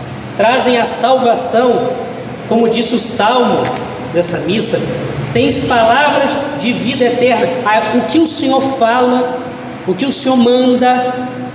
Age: 20-39